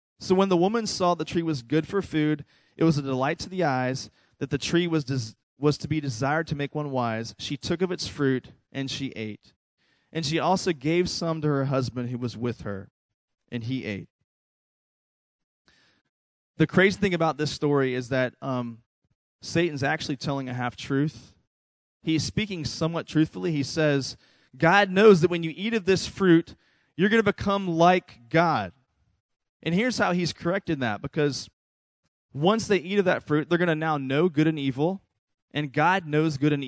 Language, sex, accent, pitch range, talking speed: English, male, American, 125-170 Hz, 185 wpm